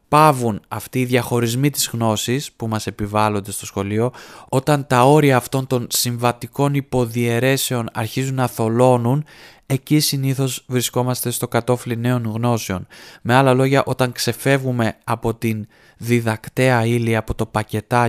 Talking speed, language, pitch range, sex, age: 160 wpm, Greek, 110-135 Hz, male, 20-39